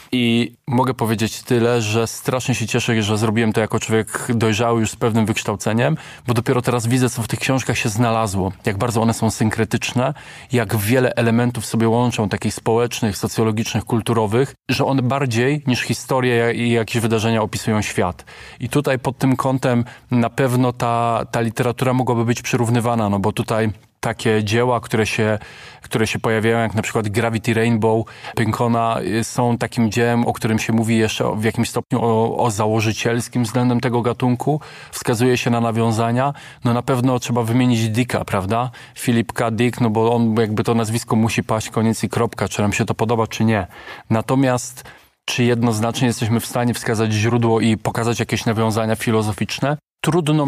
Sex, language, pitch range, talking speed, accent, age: male, Polish, 110-125 Hz, 170 wpm, native, 20-39